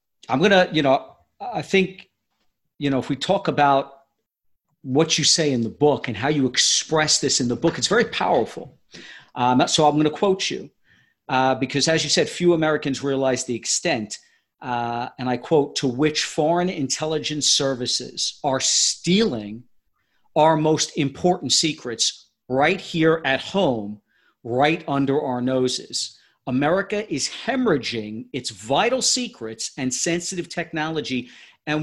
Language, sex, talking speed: English, male, 150 wpm